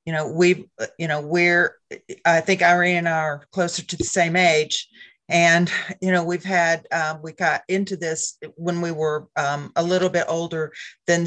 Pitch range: 145-175 Hz